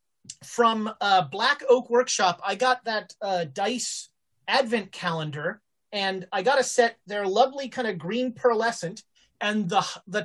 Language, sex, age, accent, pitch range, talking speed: English, male, 30-49, American, 185-240 Hz, 150 wpm